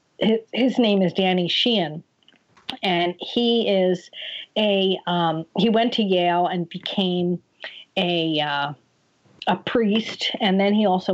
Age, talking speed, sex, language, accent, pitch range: 50-69, 130 wpm, female, English, American, 175-220 Hz